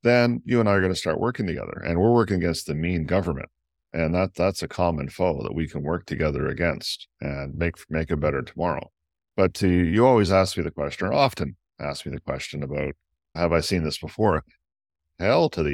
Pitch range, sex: 80-100 Hz, male